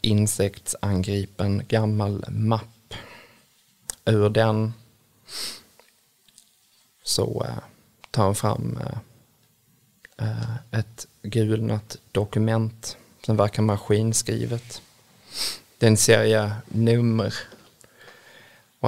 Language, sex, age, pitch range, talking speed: Swedish, male, 20-39, 105-115 Hz, 65 wpm